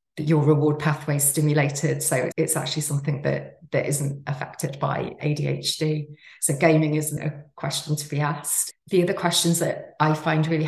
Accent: British